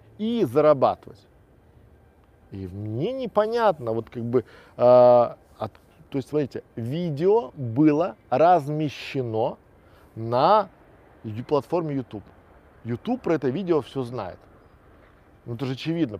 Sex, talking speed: male, 95 wpm